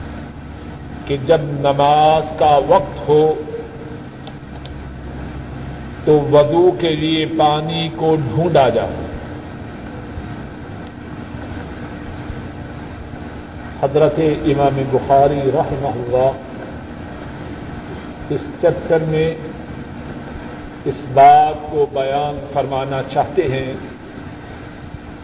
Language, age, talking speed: Urdu, 50-69, 70 wpm